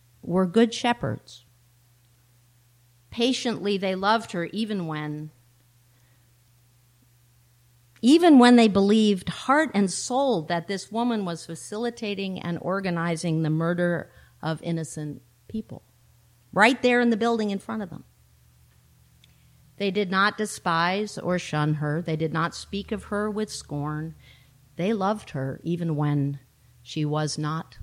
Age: 50-69